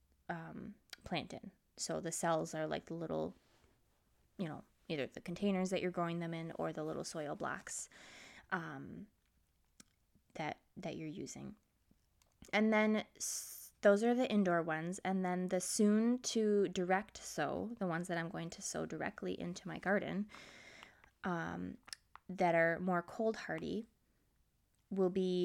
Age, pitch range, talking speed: 20-39, 165-205 Hz, 150 wpm